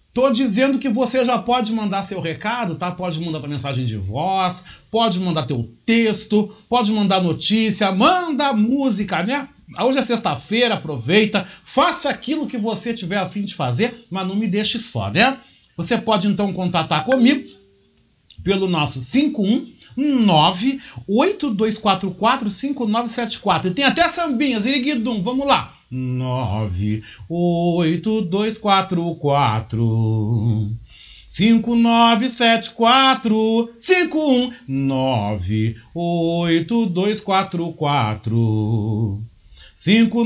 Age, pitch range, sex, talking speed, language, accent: 40-59, 170-245 Hz, male, 115 wpm, Portuguese, Brazilian